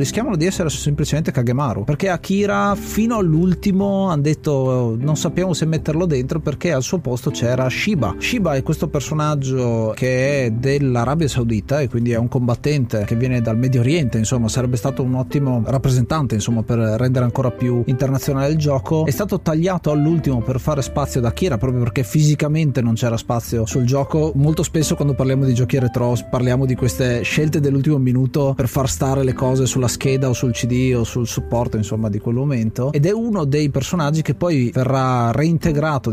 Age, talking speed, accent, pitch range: 30-49, 180 wpm, native, 120-150 Hz